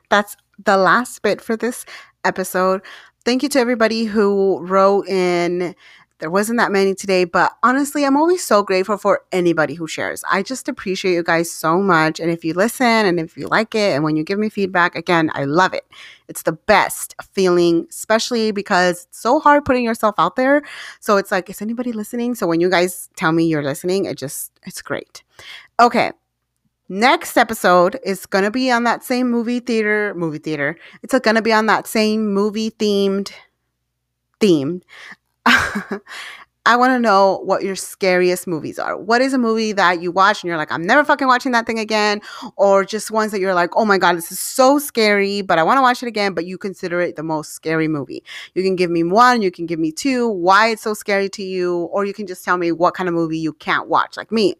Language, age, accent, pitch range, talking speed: English, 30-49, American, 175-225 Hz, 215 wpm